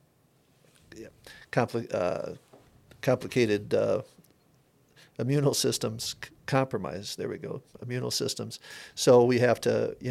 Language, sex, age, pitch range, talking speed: English, male, 50-69, 110-135 Hz, 105 wpm